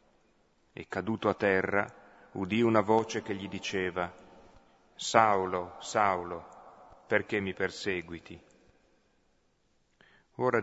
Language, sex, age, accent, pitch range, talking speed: Italian, male, 40-59, native, 90-110 Hz, 90 wpm